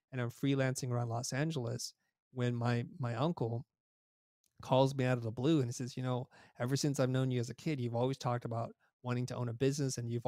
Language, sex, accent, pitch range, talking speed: English, male, American, 120-135 Hz, 235 wpm